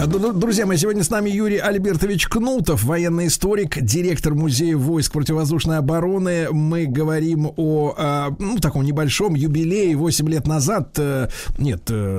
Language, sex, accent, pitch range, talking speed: Russian, male, native, 140-185 Hz, 130 wpm